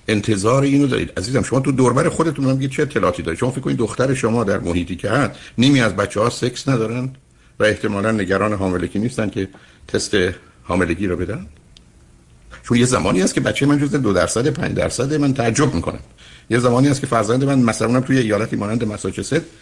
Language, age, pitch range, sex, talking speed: Persian, 60-79, 95-125 Hz, male, 195 wpm